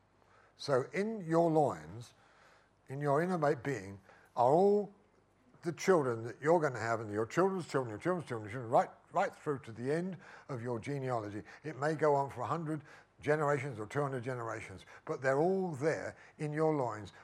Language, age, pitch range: English, 60-79, 110-160 Hz